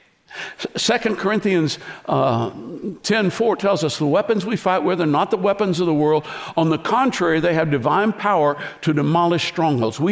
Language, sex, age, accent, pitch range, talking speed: English, male, 60-79, American, 140-185 Hz, 170 wpm